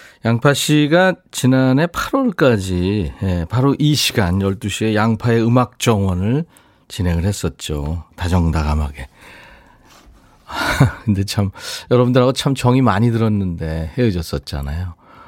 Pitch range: 95-140 Hz